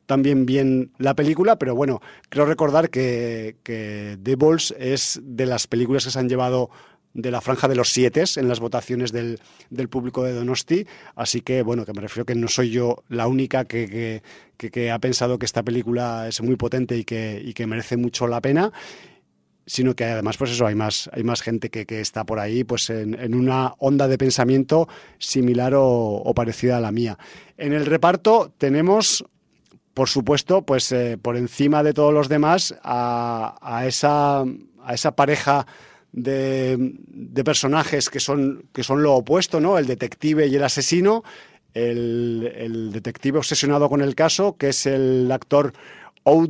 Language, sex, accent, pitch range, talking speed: Spanish, male, Spanish, 120-140 Hz, 185 wpm